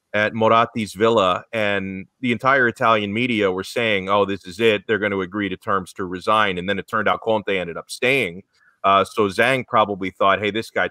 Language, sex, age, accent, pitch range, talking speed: English, male, 30-49, American, 100-115 Hz, 215 wpm